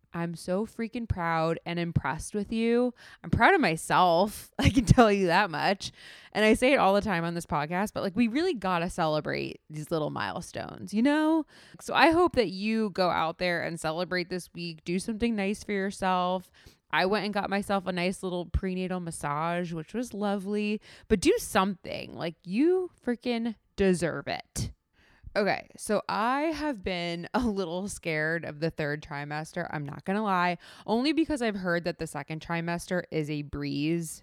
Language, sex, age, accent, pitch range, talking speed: English, female, 20-39, American, 165-215 Hz, 185 wpm